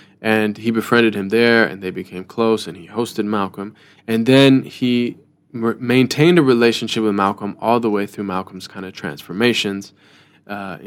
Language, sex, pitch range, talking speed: English, male, 100-120 Hz, 165 wpm